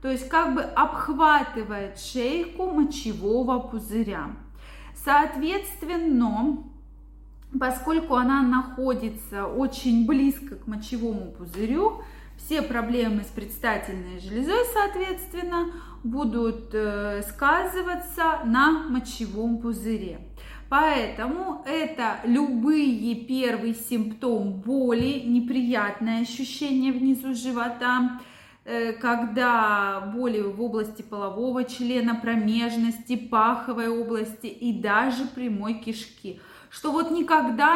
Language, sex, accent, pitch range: Russian, female, native, 225-280 Hz